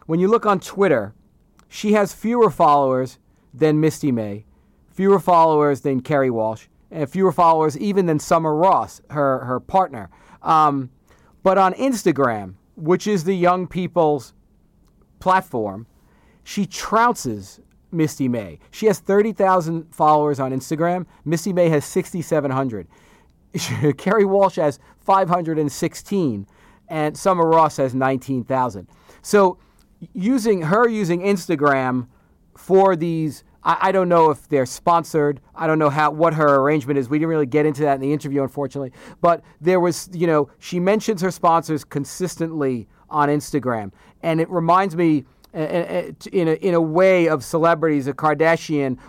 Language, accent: English, American